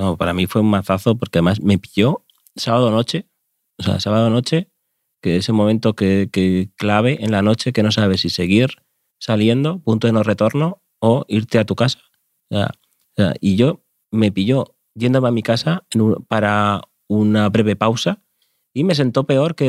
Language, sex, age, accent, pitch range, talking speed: Spanish, male, 30-49, Spanish, 105-130 Hz, 190 wpm